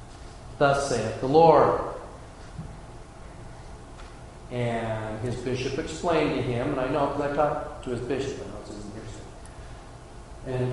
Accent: American